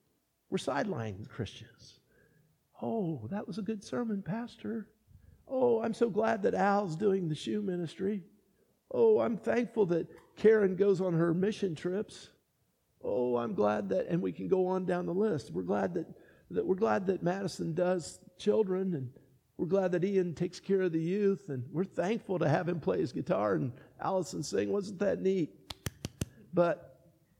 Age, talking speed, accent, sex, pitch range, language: 50-69, 170 wpm, American, male, 175-235 Hz, English